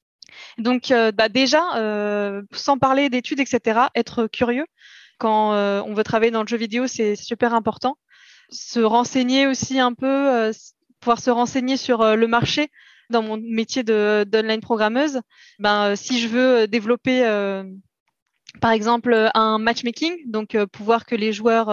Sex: female